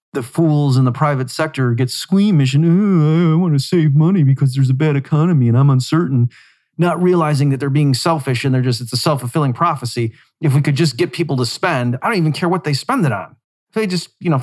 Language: English